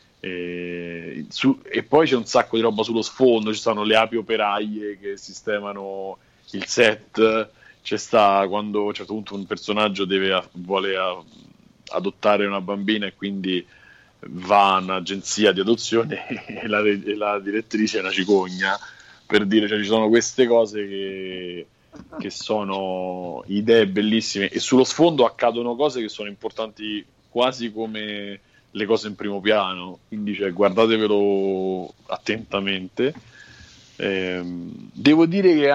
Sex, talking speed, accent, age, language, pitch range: male, 145 wpm, native, 30-49, Italian, 100-120 Hz